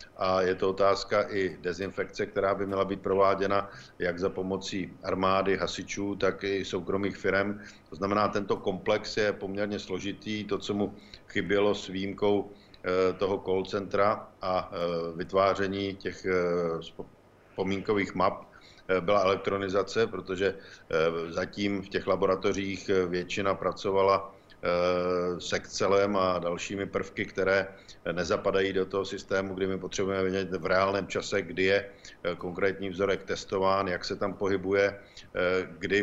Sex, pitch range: male, 95-100 Hz